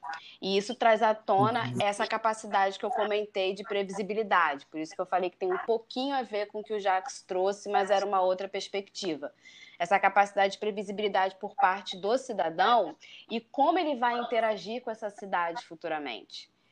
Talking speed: 185 wpm